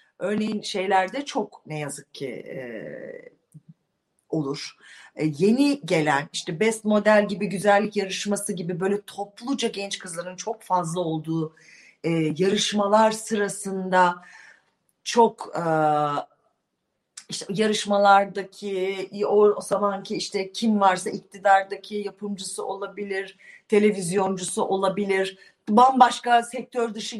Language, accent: Turkish, native